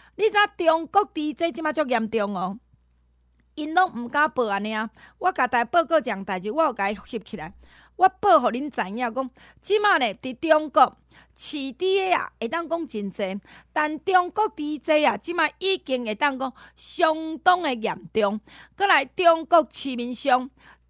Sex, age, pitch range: female, 30-49, 235-335 Hz